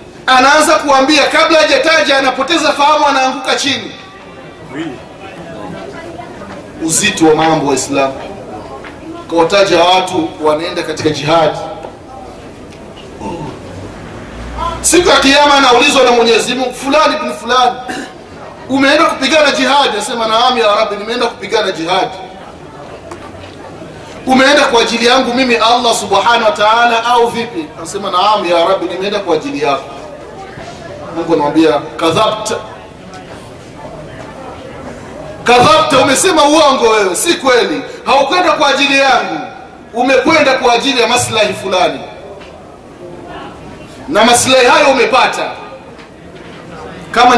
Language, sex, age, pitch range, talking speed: Swahili, male, 30-49, 205-275 Hz, 110 wpm